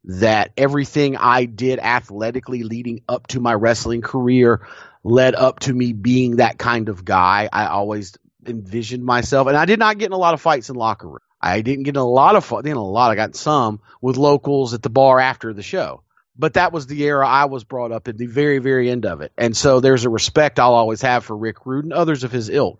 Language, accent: English, American